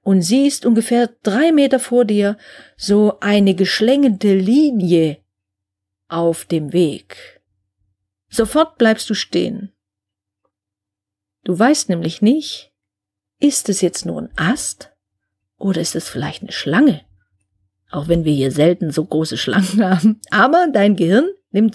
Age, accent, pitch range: 40-59, German, 165-230 Hz